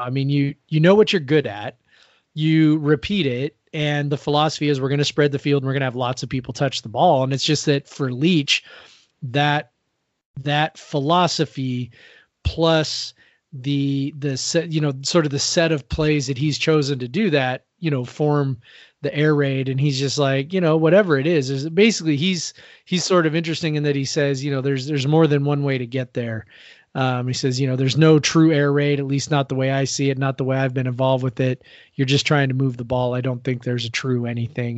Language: English